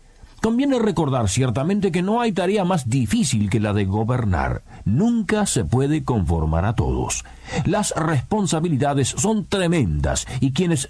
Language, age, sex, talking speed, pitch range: Spanish, 50-69, male, 140 wpm, 100-170 Hz